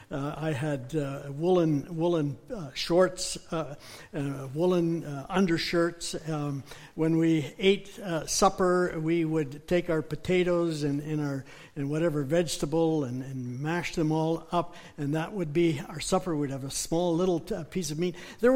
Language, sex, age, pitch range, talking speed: English, male, 60-79, 155-200 Hz, 170 wpm